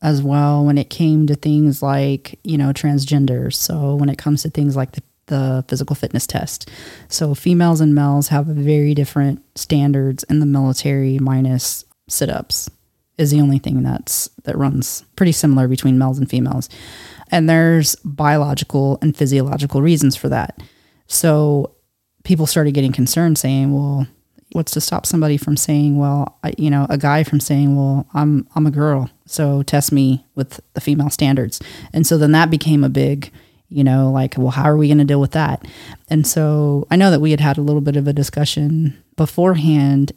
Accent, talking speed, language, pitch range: American, 185 wpm, English, 135-150 Hz